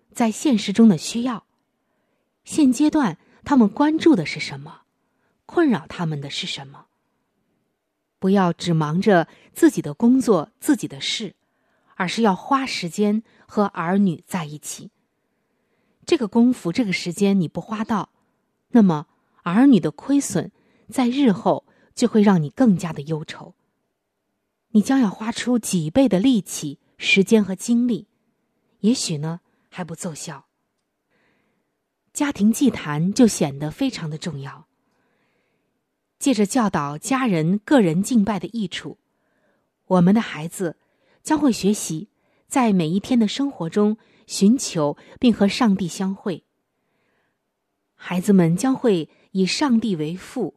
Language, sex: Chinese, female